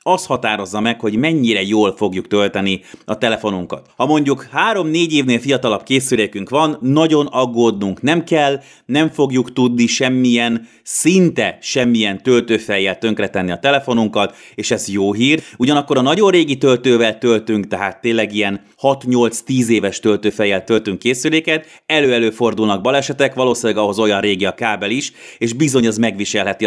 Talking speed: 140 wpm